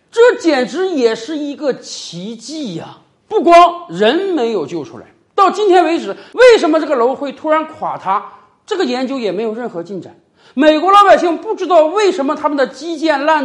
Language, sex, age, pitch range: Chinese, male, 50-69, 235-340 Hz